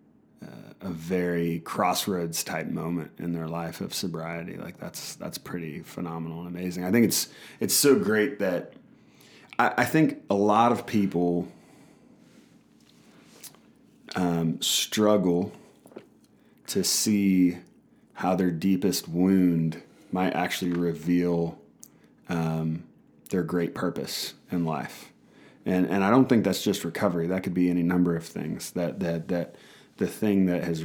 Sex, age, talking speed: male, 30-49, 140 wpm